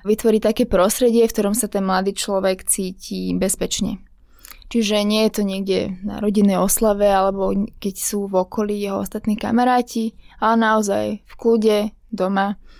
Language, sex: Slovak, female